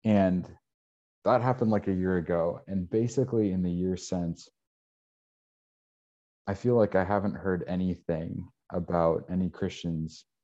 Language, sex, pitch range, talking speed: English, male, 80-95 Hz, 130 wpm